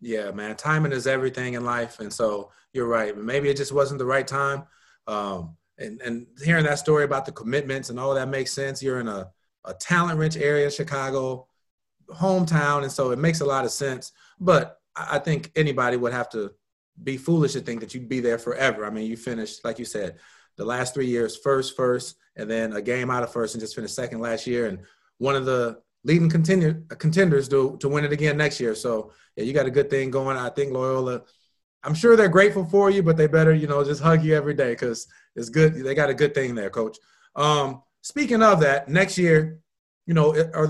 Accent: American